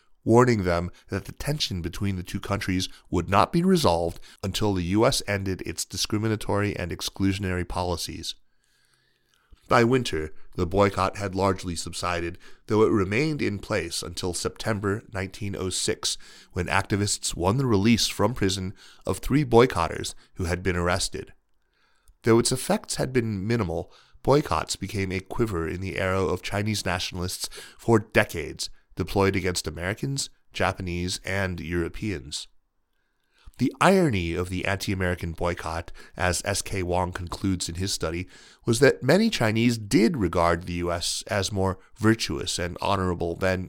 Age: 30-49